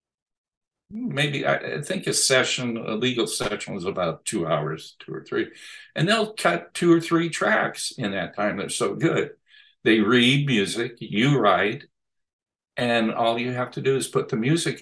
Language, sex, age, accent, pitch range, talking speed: English, male, 60-79, American, 105-140 Hz, 175 wpm